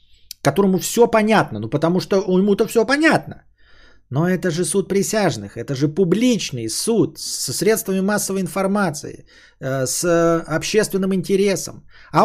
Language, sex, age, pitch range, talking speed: Bulgarian, male, 30-49, 120-180 Hz, 130 wpm